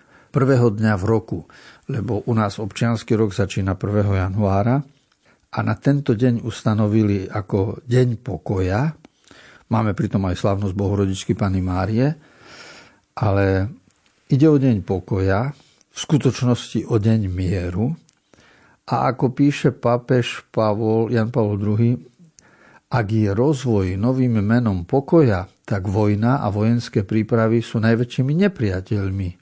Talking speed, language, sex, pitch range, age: 120 wpm, Slovak, male, 105-125 Hz, 50-69